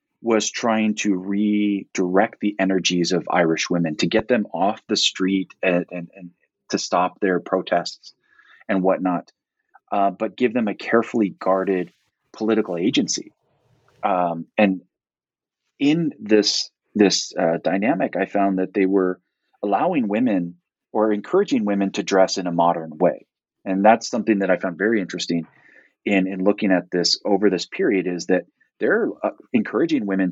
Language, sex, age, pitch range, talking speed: English, male, 30-49, 90-110 Hz, 155 wpm